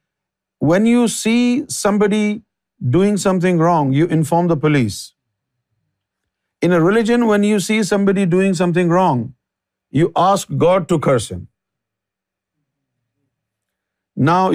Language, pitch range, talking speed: Urdu, 130-185 Hz, 115 wpm